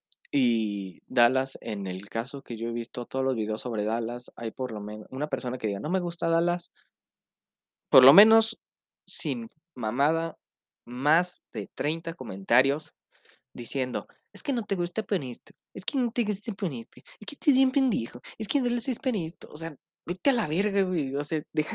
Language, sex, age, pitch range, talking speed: Spanish, male, 20-39, 125-170 Hz, 190 wpm